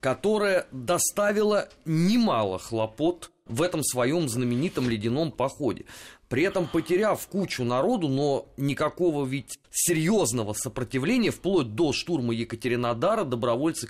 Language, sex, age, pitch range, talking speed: Russian, male, 30-49, 120-180 Hz, 110 wpm